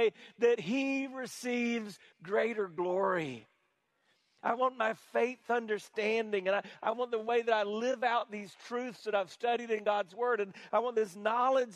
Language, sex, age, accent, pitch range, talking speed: English, male, 50-69, American, 205-255 Hz, 170 wpm